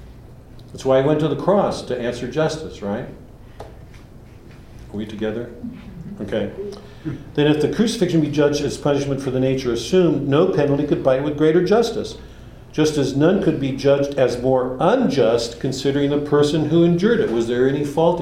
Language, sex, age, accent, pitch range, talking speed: English, male, 50-69, American, 110-145 Hz, 175 wpm